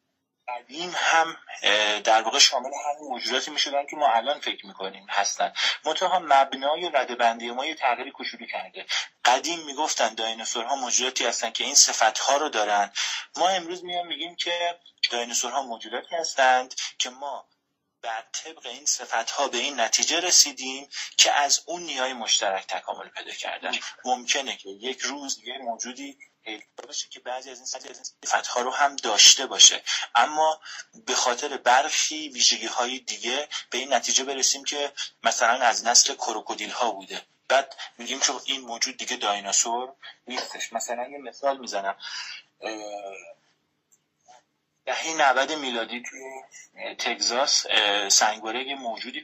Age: 30-49